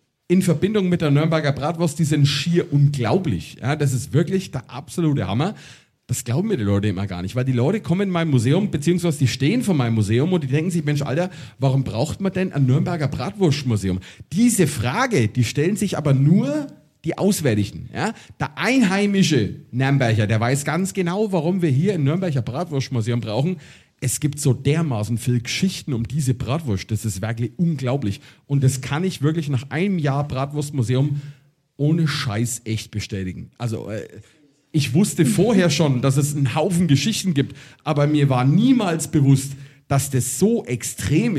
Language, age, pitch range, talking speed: German, 40-59, 125-165 Hz, 175 wpm